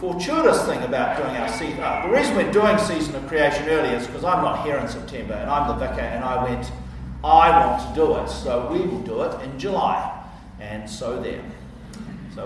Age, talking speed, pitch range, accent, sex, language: 50-69, 215 wpm, 130-165 Hz, Australian, male, English